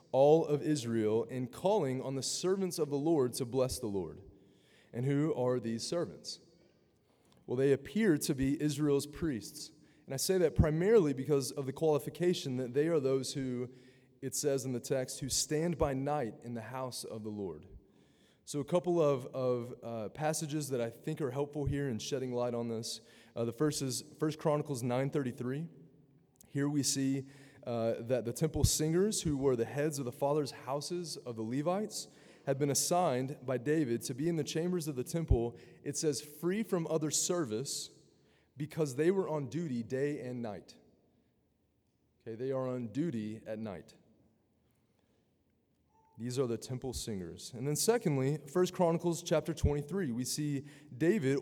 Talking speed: 175 wpm